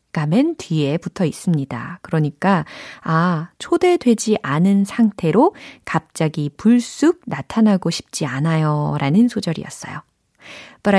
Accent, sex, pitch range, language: native, female, 160-225 Hz, Korean